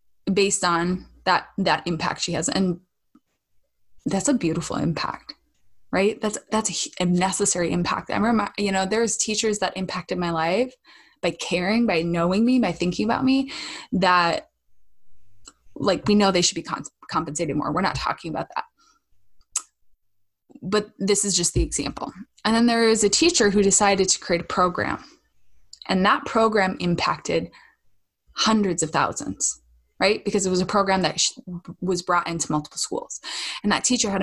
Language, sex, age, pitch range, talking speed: English, female, 20-39, 165-215 Hz, 160 wpm